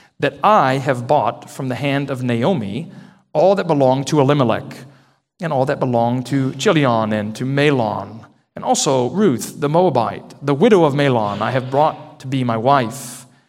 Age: 40-59